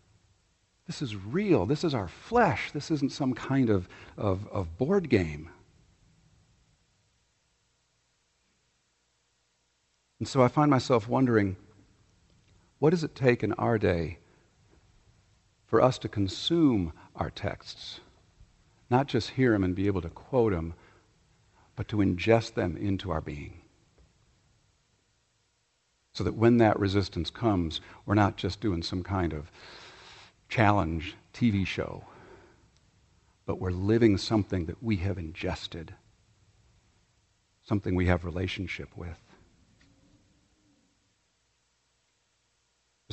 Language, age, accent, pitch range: English, 50-69, American, 90-115 Hz